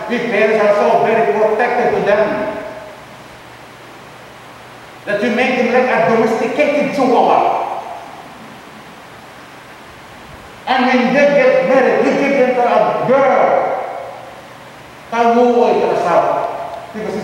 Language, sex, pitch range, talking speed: English, male, 215-260 Hz, 100 wpm